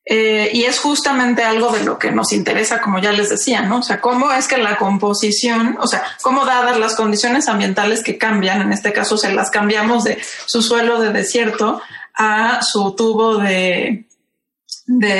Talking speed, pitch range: 185 wpm, 210-255 Hz